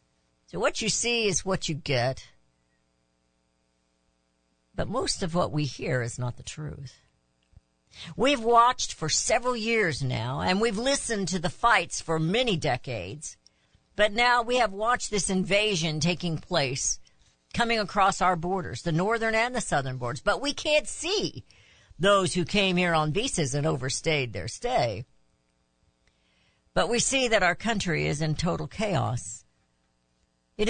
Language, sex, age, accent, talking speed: English, female, 60-79, American, 150 wpm